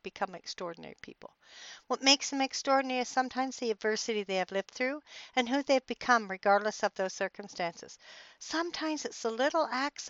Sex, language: female, English